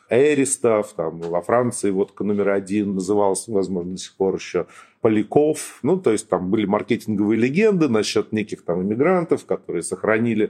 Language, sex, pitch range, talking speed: Russian, male, 105-135 Hz, 155 wpm